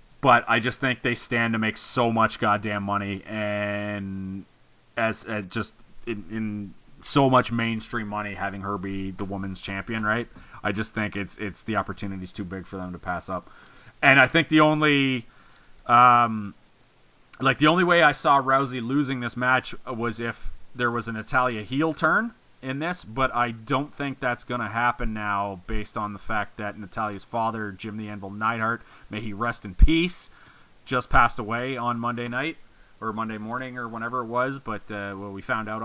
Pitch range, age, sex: 105-130 Hz, 30-49, male